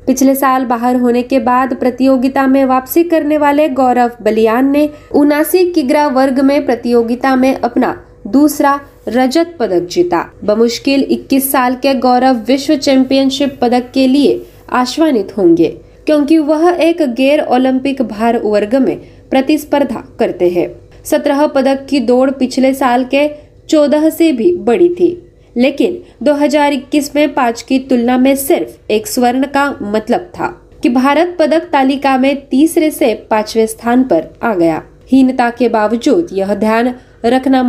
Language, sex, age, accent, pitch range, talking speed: Marathi, female, 20-39, native, 245-295 Hz, 145 wpm